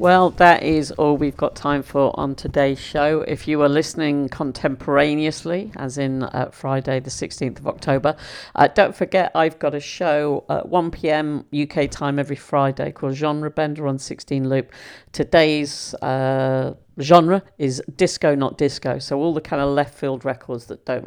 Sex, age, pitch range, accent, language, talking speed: female, 50-69, 135-160 Hz, British, English, 170 wpm